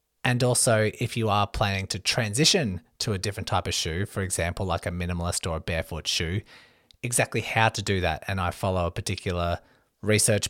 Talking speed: 195 wpm